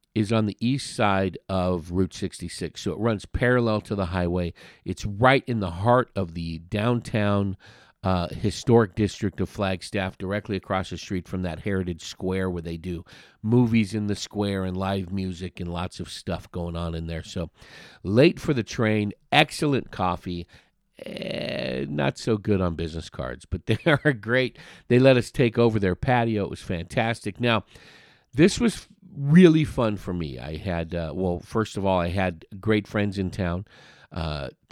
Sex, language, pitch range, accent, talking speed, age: male, English, 90-115 Hz, American, 180 wpm, 50-69